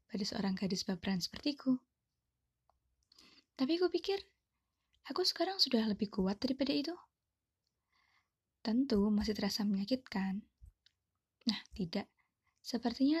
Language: Indonesian